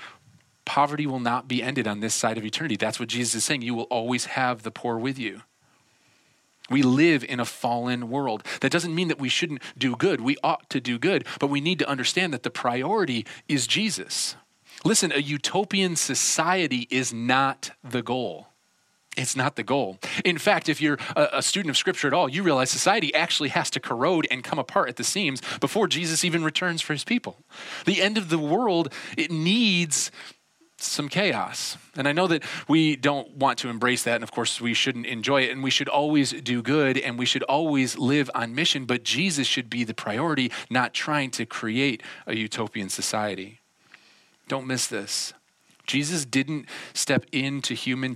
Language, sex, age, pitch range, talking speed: English, male, 30-49, 120-155 Hz, 190 wpm